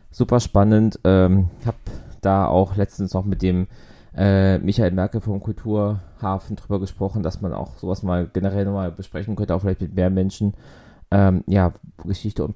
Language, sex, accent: German, male, German